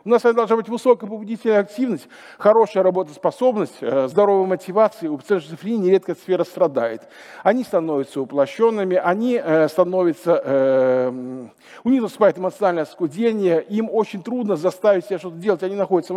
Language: Russian